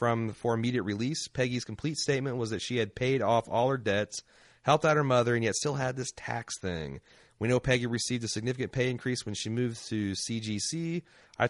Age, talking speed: 30-49, 220 wpm